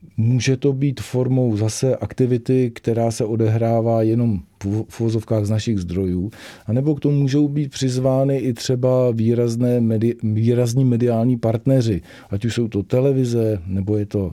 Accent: native